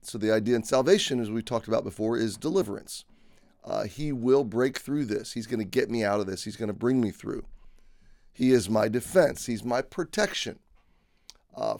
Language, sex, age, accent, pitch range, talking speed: English, male, 30-49, American, 110-135 Hz, 205 wpm